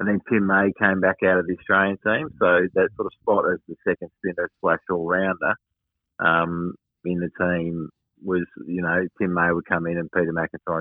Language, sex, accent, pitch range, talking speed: English, male, Australian, 85-95 Hz, 205 wpm